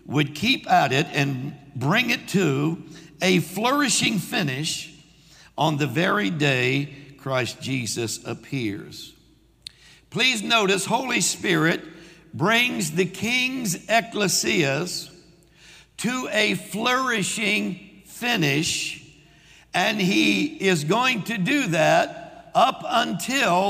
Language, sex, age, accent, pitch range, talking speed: English, male, 60-79, American, 155-205 Hz, 100 wpm